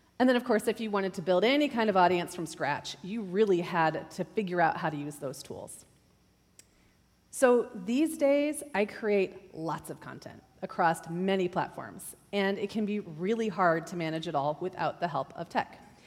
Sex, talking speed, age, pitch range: female, 195 wpm, 30-49, 175-220 Hz